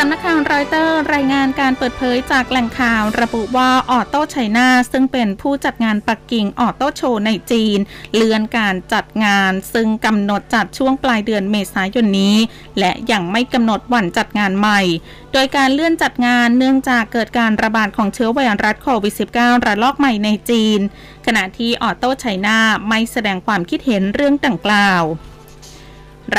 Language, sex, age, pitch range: Thai, female, 20-39, 205-255 Hz